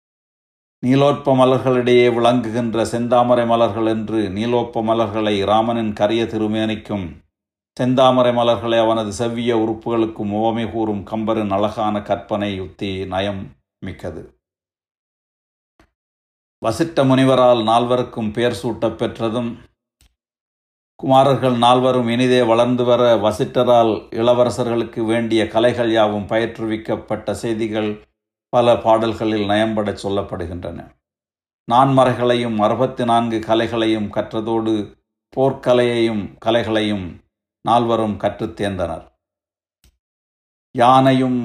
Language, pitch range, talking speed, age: Tamil, 105-120 Hz, 80 wpm, 60-79